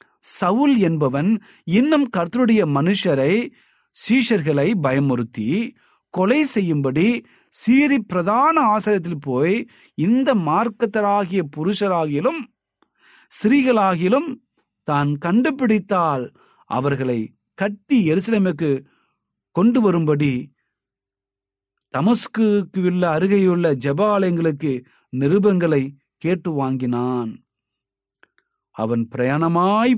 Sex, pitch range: male, 125-195 Hz